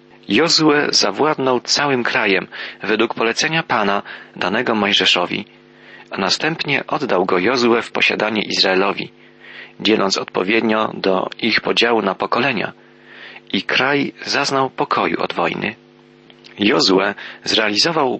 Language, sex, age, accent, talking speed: Polish, male, 40-59, native, 105 wpm